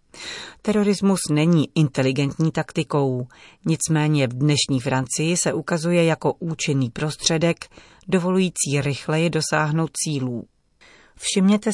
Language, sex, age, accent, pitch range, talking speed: Czech, female, 40-59, native, 140-170 Hz, 90 wpm